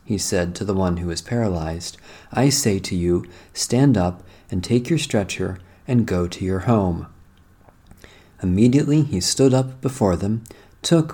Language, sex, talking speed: English, male, 160 wpm